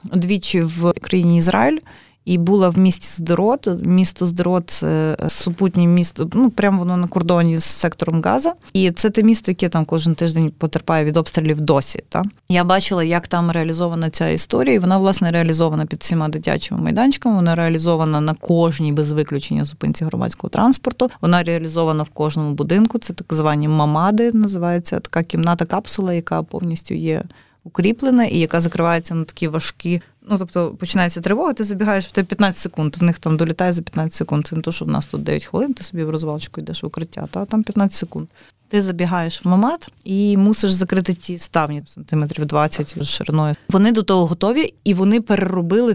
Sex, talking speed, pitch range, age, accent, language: female, 180 wpm, 165-200 Hz, 20-39, native, Ukrainian